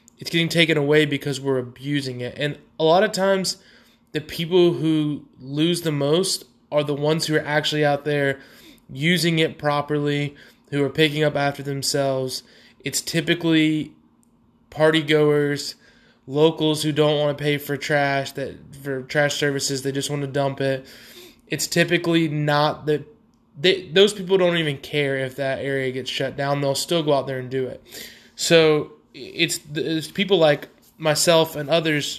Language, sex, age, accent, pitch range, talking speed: English, male, 20-39, American, 140-160 Hz, 165 wpm